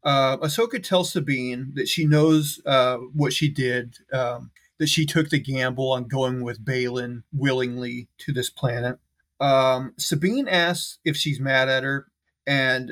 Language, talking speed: English, 160 wpm